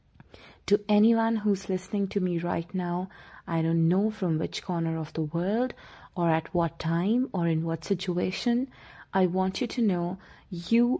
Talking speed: 170 wpm